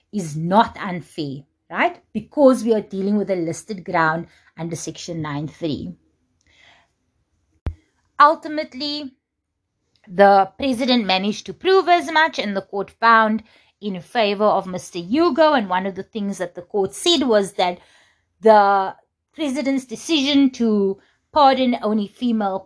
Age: 30-49